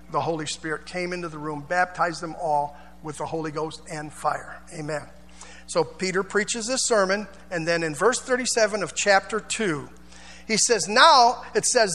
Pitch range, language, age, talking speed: 175-270 Hz, English, 50-69, 175 wpm